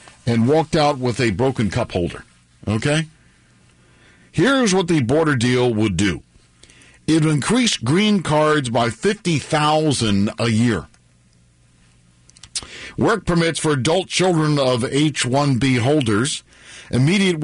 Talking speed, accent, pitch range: 115 wpm, American, 90-150 Hz